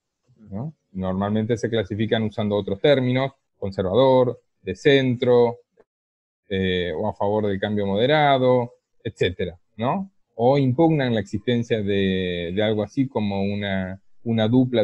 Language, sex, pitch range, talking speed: Spanish, male, 110-160 Hz, 125 wpm